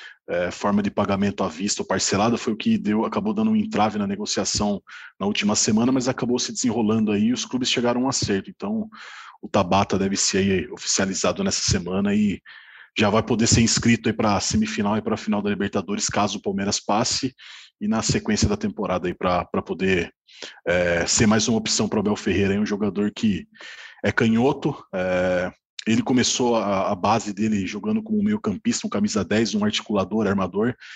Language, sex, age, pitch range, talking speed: Portuguese, male, 20-39, 100-130 Hz, 195 wpm